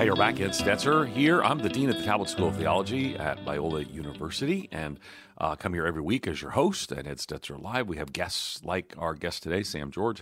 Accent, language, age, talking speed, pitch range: American, English, 40-59, 235 wpm, 80-105 Hz